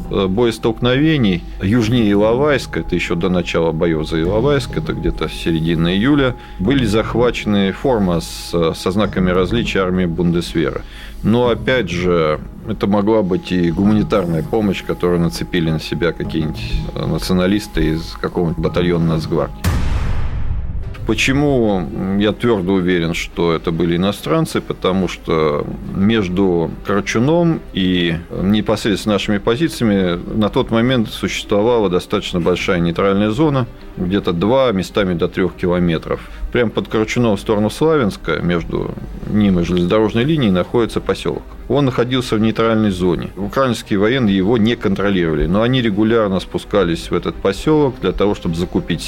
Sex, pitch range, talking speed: male, 90-115 Hz, 130 wpm